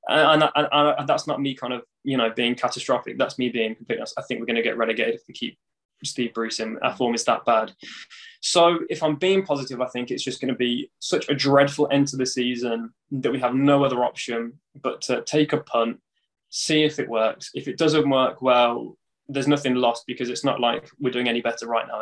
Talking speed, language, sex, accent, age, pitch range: 235 wpm, English, male, British, 10-29, 125-150 Hz